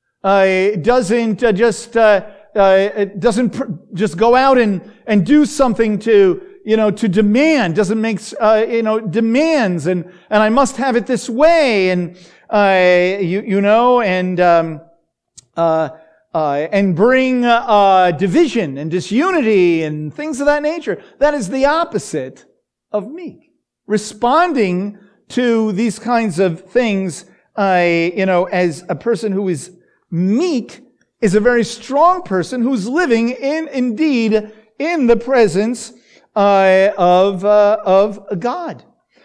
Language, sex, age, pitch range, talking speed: English, male, 50-69, 185-235 Hz, 145 wpm